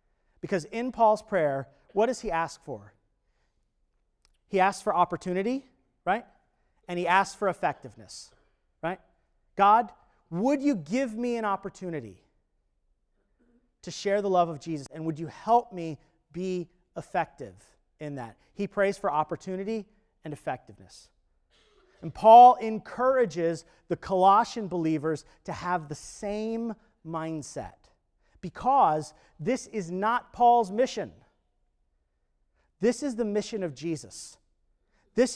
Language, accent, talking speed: English, American, 120 wpm